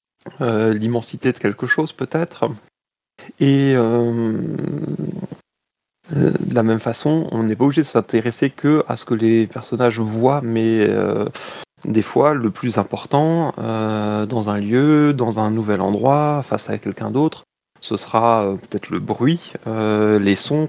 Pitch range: 105-130 Hz